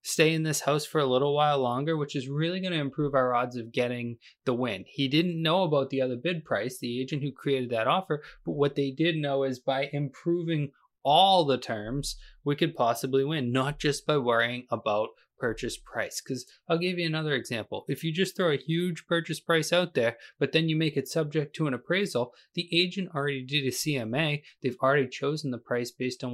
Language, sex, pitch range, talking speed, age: English, male, 130-160 Hz, 215 wpm, 20-39